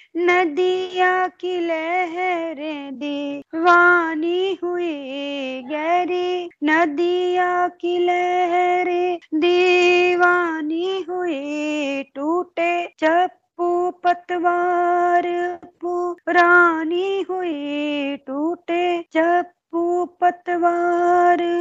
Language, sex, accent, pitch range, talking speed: Hindi, female, native, 265-350 Hz, 50 wpm